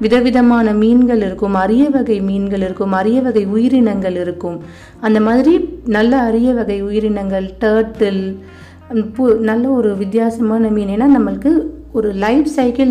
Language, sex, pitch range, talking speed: Tamil, female, 195-250 Hz, 125 wpm